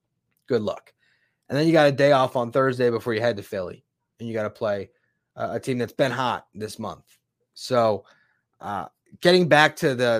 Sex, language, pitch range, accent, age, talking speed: male, English, 115-145 Hz, American, 20-39, 205 wpm